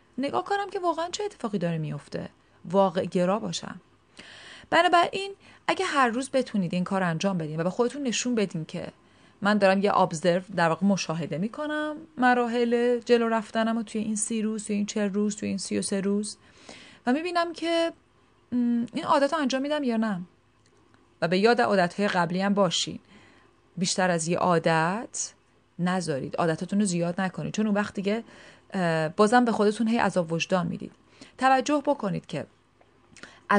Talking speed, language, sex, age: 160 wpm, Persian, female, 30-49